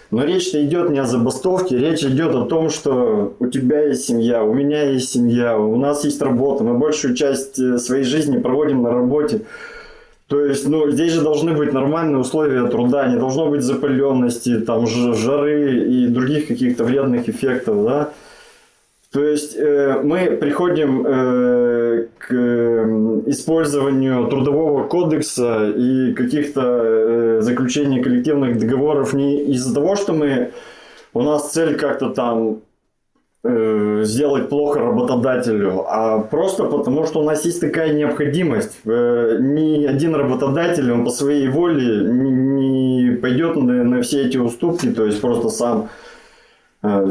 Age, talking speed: 20-39, 145 wpm